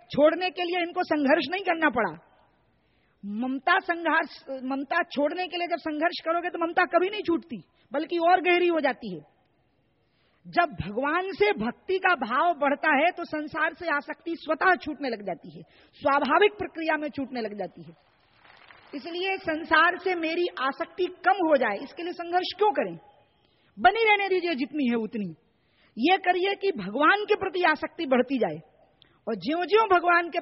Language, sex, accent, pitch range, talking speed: Hindi, female, native, 275-340 Hz, 170 wpm